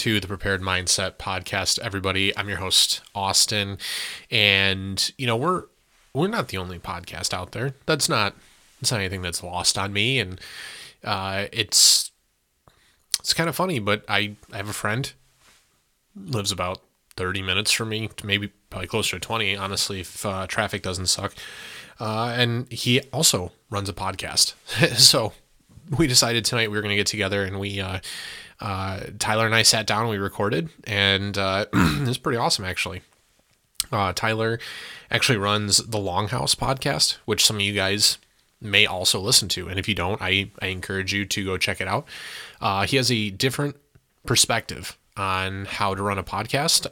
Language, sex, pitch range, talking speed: English, male, 95-115 Hz, 175 wpm